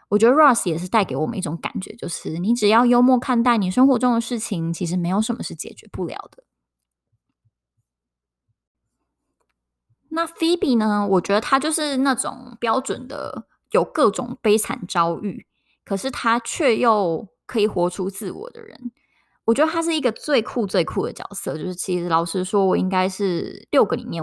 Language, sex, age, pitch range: Chinese, female, 20-39, 185-240 Hz